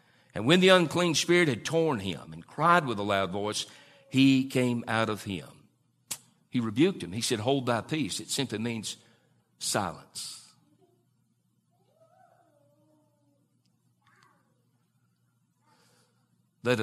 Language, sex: English, male